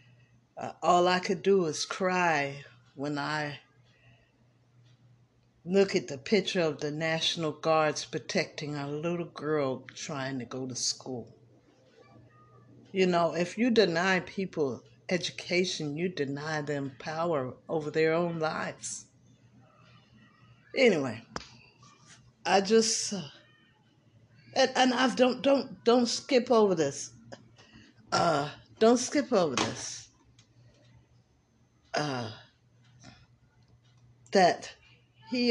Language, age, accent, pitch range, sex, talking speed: English, 50-69, American, 120-175 Hz, female, 105 wpm